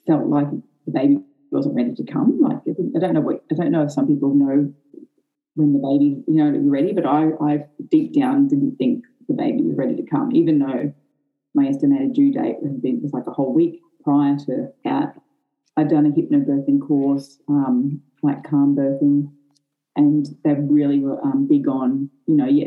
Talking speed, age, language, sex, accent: 200 wpm, 20-39, English, female, Australian